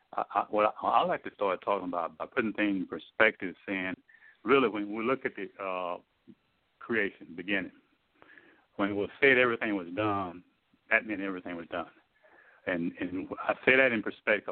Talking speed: 185 wpm